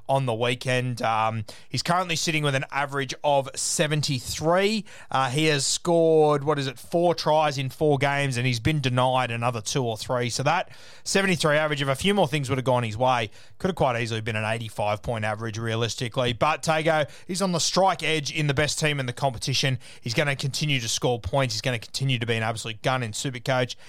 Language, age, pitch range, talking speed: English, 30-49, 120-155 Hz, 220 wpm